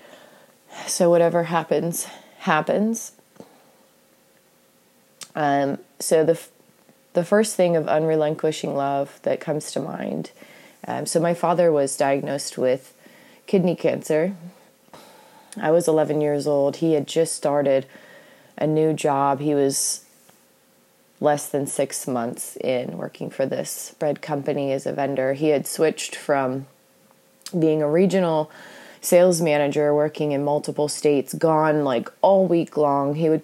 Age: 20-39